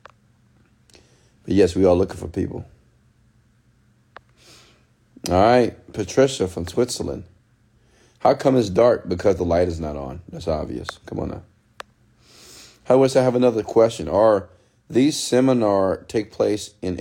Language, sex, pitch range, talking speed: English, male, 90-115 Hz, 135 wpm